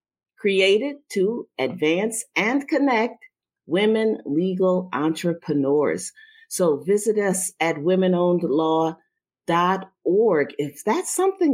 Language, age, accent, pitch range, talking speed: English, 50-69, American, 160-245 Hz, 85 wpm